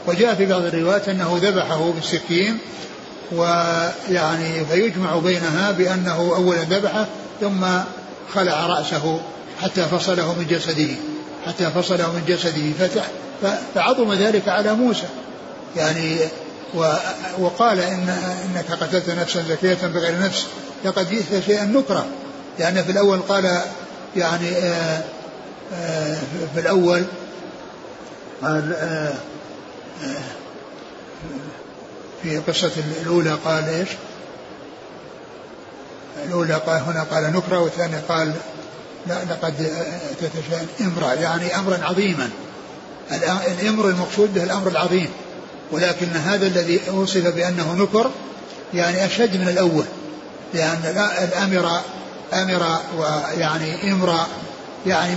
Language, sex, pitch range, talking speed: Arabic, male, 165-190 Hz, 95 wpm